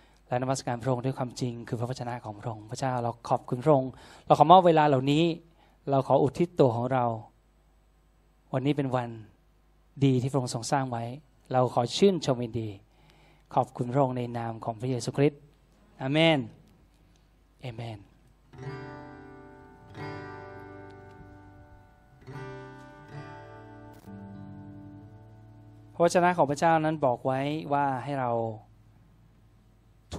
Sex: male